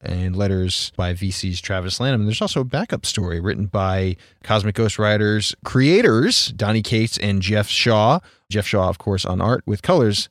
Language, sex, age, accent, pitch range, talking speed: English, male, 30-49, American, 95-115 Hz, 175 wpm